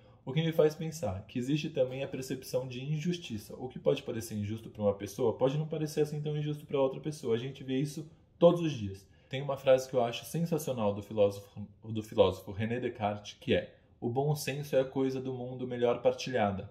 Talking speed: 220 wpm